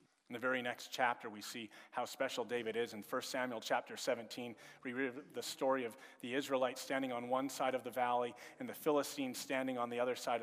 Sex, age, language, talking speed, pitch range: male, 40-59, English, 220 wpm, 115-165 Hz